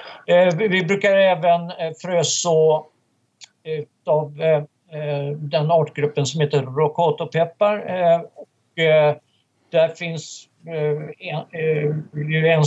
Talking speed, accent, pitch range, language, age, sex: 60 wpm, native, 150-180 Hz, Swedish, 60-79, male